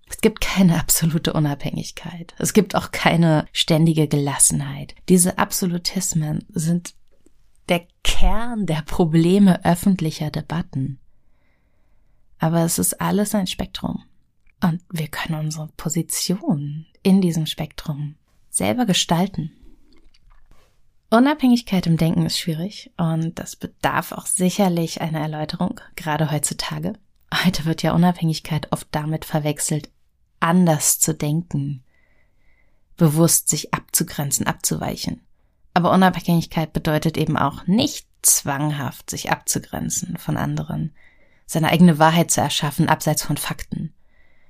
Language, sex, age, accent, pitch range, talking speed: German, female, 30-49, German, 150-180 Hz, 110 wpm